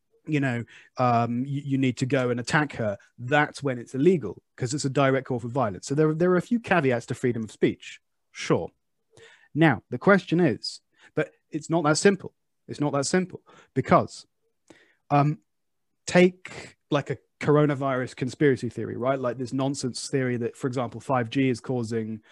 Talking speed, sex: 175 wpm, male